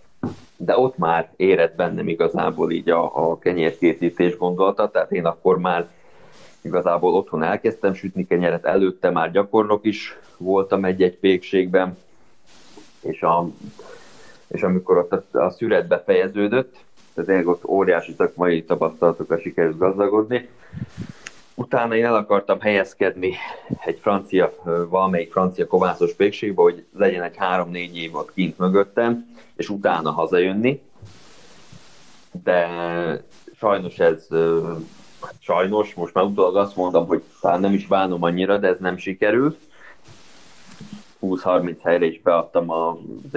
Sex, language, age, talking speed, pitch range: male, Hungarian, 30-49, 120 wpm, 90-110 Hz